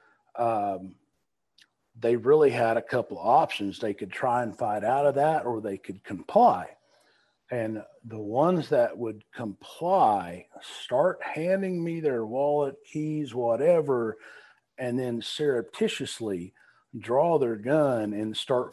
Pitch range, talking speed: 110-150 Hz, 130 wpm